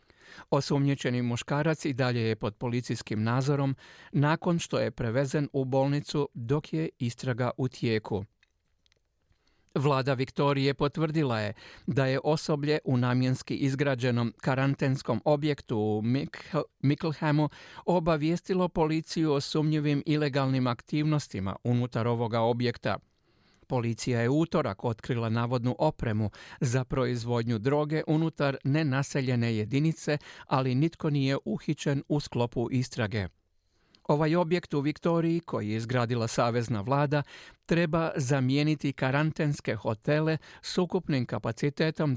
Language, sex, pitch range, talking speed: Croatian, male, 120-150 Hz, 110 wpm